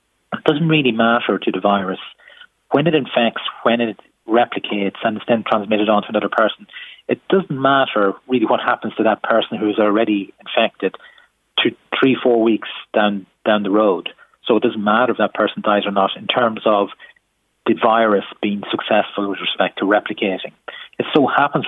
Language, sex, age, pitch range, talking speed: English, male, 30-49, 100-115 Hz, 180 wpm